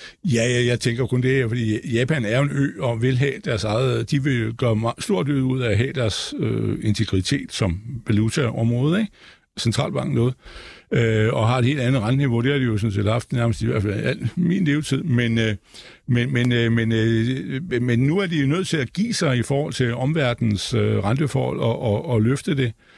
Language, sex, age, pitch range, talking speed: Danish, male, 60-79, 110-140 Hz, 210 wpm